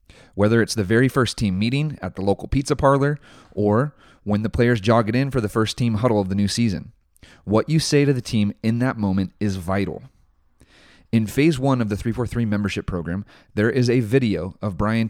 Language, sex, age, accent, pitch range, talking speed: English, male, 30-49, American, 95-120 Hz, 210 wpm